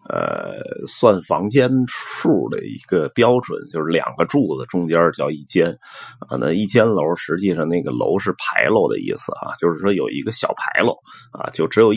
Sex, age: male, 30-49